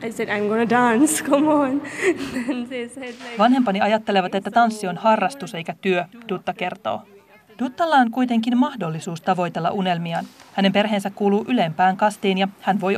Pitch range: 175-220 Hz